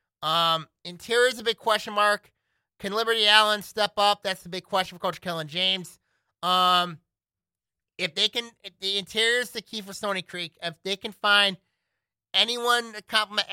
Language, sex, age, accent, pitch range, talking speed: English, male, 30-49, American, 160-200 Hz, 180 wpm